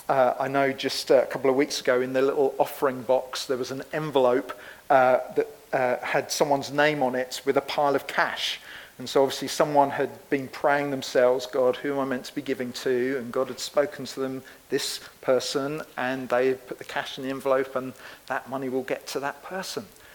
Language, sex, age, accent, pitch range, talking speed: English, male, 40-59, British, 130-155 Hz, 215 wpm